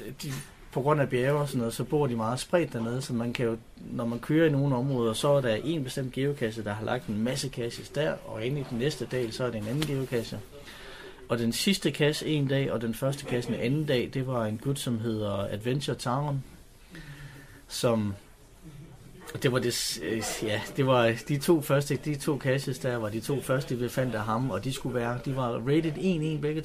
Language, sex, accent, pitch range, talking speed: Danish, male, native, 115-145 Hz, 230 wpm